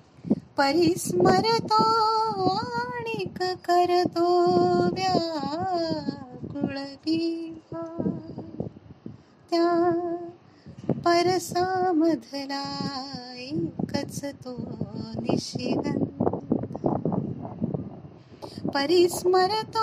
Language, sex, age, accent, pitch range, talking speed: Marathi, female, 20-39, native, 280-370 Hz, 35 wpm